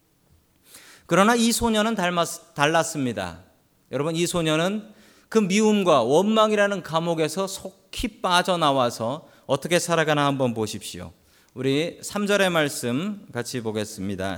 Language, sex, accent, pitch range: Korean, male, native, 130-210 Hz